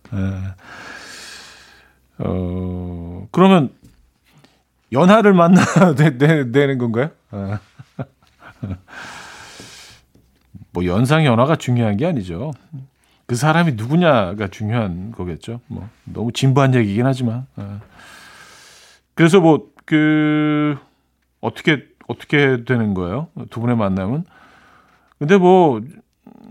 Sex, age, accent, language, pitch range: male, 40-59, native, Korean, 100-155 Hz